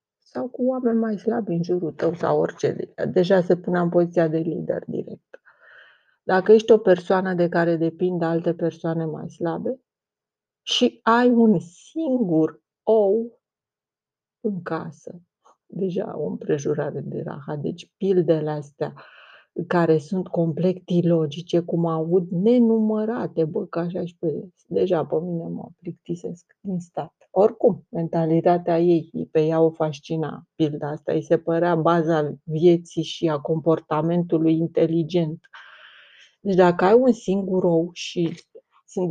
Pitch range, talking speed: 165-190 Hz, 135 wpm